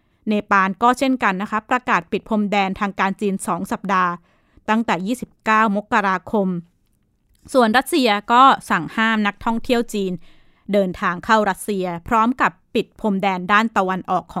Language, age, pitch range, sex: Thai, 20-39, 190-235 Hz, female